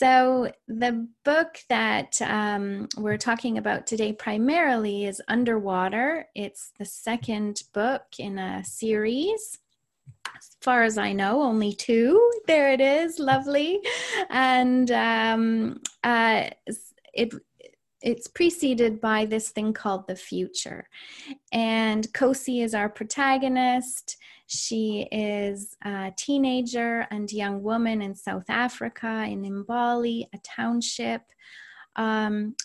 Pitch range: 200-245 Hz